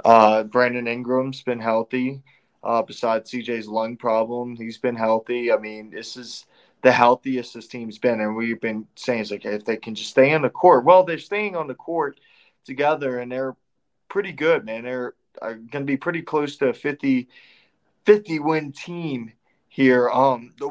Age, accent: 20-39, American